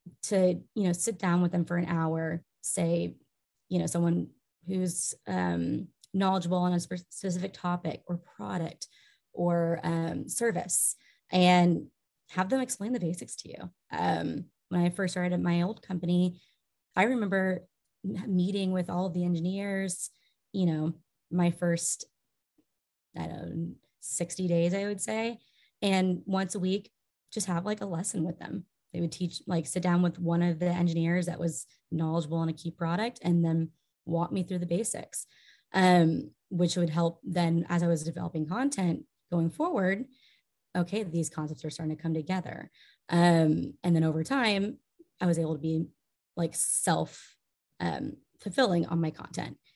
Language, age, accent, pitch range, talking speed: English, 20-39, American, 165-185 Hz, 160 wpm